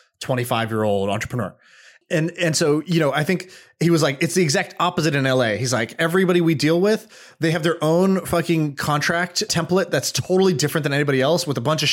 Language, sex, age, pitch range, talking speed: English, male, 20-39, 130-170 Hz, 215 wpm